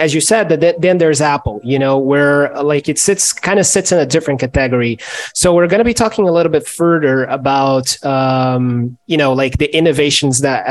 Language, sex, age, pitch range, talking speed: English, male, 20-39, 140-165 Hz, 215 wpm